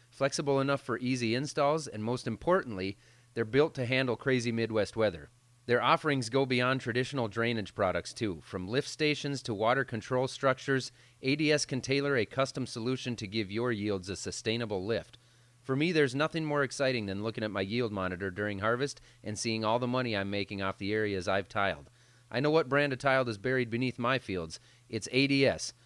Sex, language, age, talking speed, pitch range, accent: male, English, 30-49, 190 wpm, 110-135 Hz, American